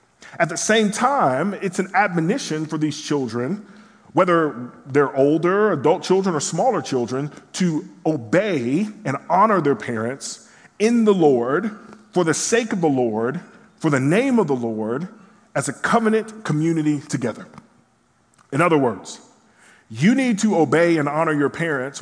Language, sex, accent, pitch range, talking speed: English, male, American, 135-205 Hz, 150 wpm